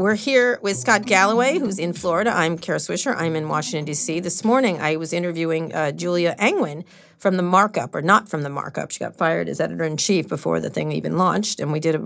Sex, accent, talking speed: female, American, 225 wpm